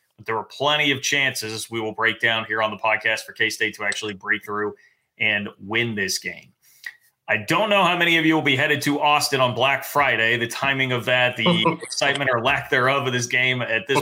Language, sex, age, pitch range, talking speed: English, male, 30-49, 120-135 Hz, 225 wpm